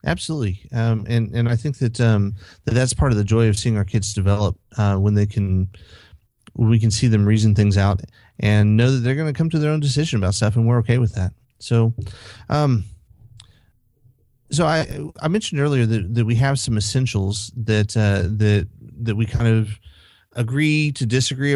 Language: English